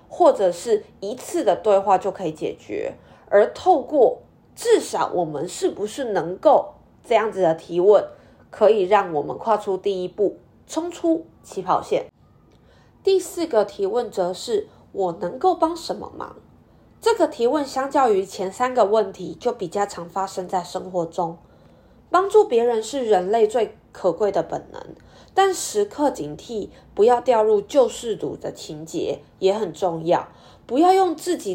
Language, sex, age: Chinese, female, 20-39